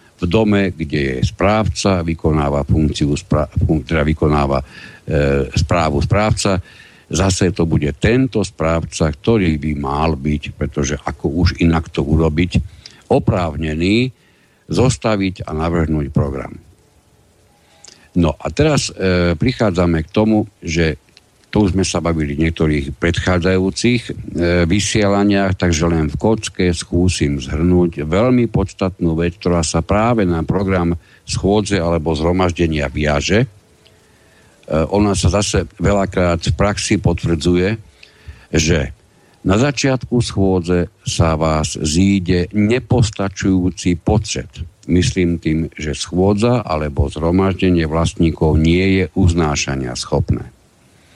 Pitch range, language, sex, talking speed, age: 80-100 Hz, Slovak, male, 110 wpm, 60-79